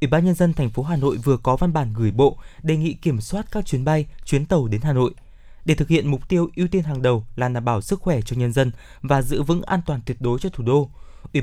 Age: 20-39